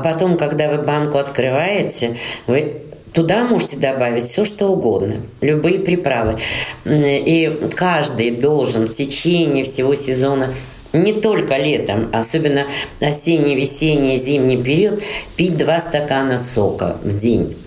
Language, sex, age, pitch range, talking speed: Russian, female, 40-59, 125-165 Hz, 120 wpm